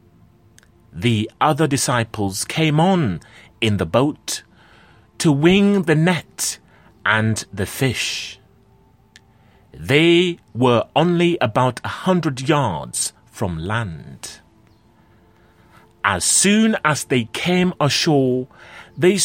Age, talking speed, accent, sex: 30-49, 95 wpm, British, male